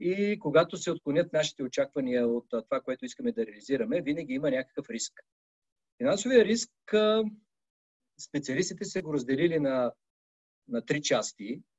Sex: male